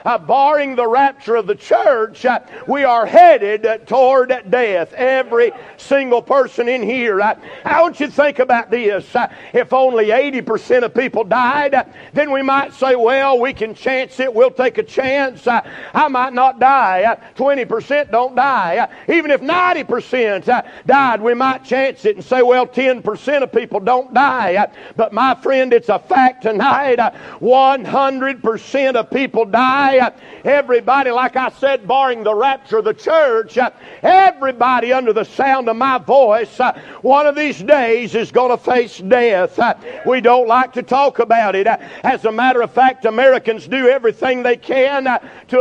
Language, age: English, 50-69